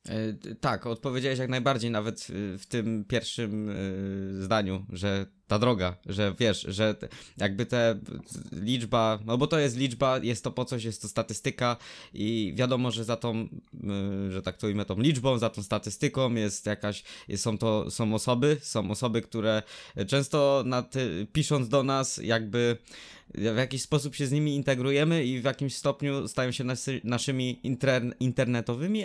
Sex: male